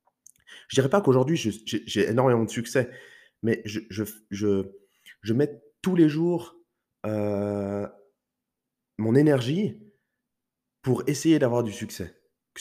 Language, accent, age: French, French, 30-49